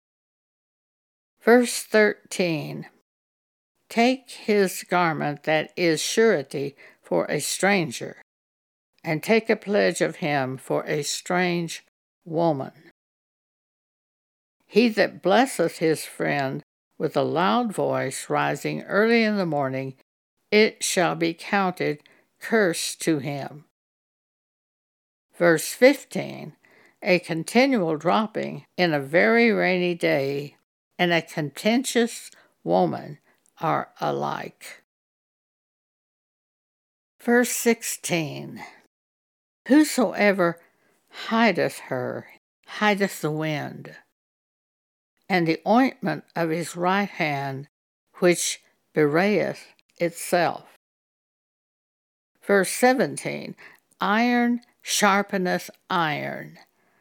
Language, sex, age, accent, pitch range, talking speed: English, female, 60-79, American, 155-220 Hz, 85 wpm